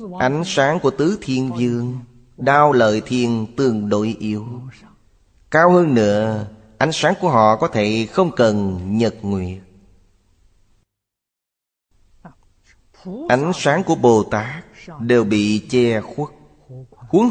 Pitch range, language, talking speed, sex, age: 100-130 Hz, Vietnamese, 120 wpm, male, 20-39